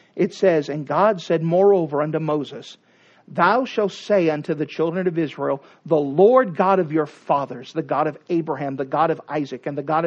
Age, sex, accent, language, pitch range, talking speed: 40-59, male, American, English, 160-210 Hz, 195 wpm